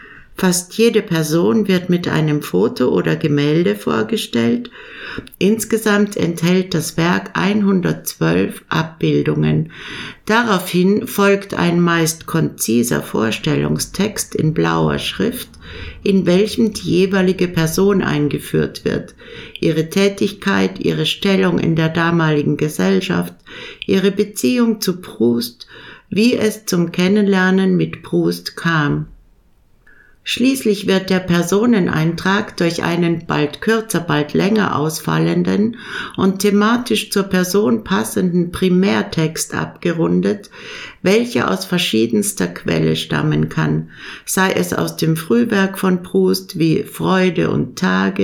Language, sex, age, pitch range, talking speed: German, female, 60-79, 120-200 Hz, 105 wpm